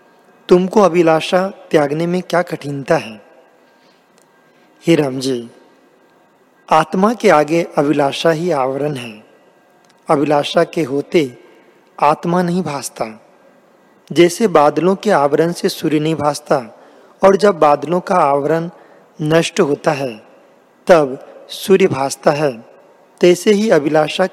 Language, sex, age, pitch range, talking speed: Hindi, male, 40-59, 150-190 Hz, 110 wpm